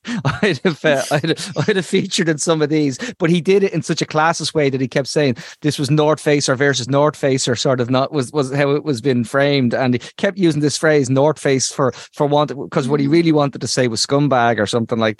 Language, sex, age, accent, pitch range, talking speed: English, male, 20-39, Irish, 130-150 Hz, 265 wpm